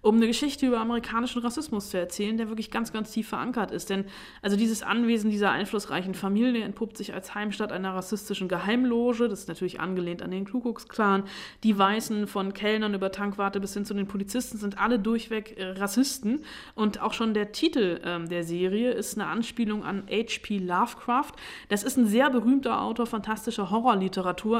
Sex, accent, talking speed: female, German, 180 wpm